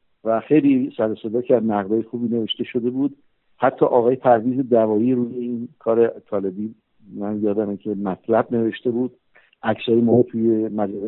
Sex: male